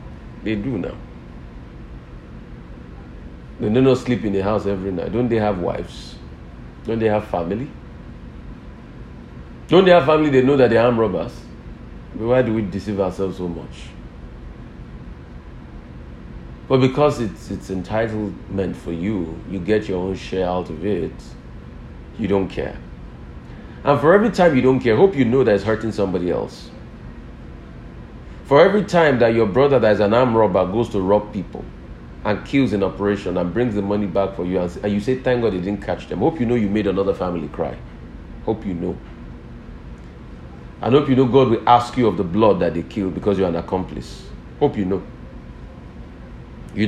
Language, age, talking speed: English, 40-59, 175 wpm